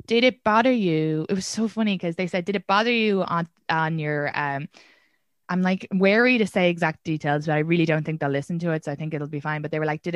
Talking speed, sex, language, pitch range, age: 270 wpm, female, English, 160-215 Hz, 20-39